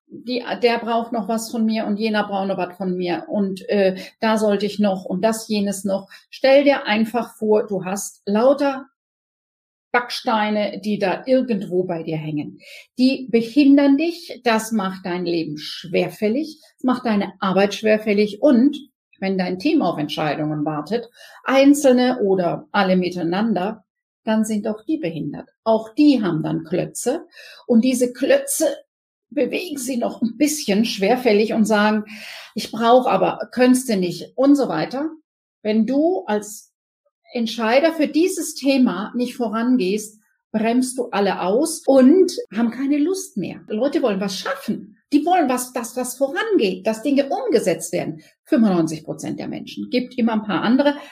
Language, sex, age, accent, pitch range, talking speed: German, female, 50-69, German, 205-275 Hz, 155 wpm